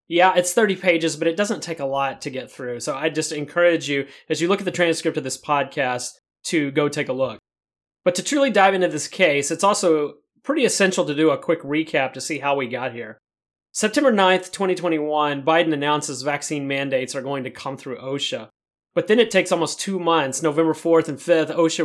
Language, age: English, 30-49